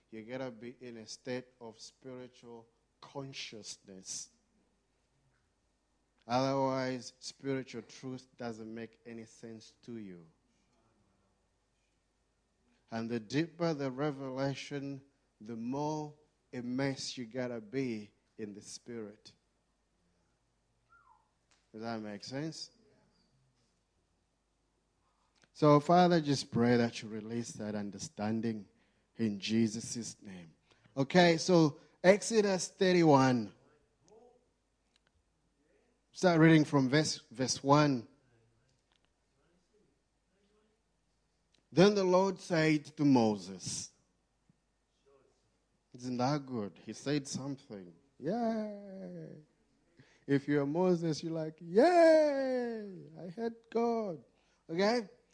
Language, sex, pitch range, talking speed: English, male, 115-165 Hz, 90 wpm